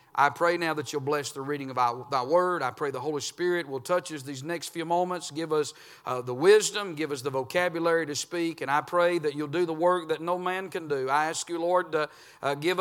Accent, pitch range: American, 150-215 Hz